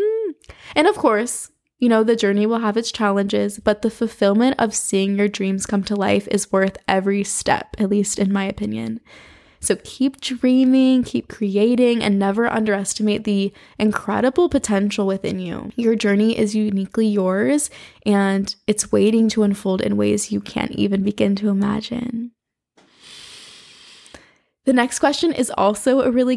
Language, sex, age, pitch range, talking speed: English, female, 10-29, 200-245 Hz, 155 wpm